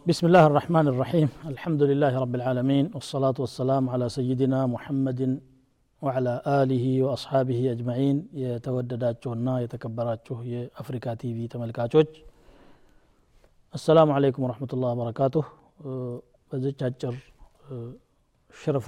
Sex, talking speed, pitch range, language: male, 100 wpm, 125-150 Hz, Amharic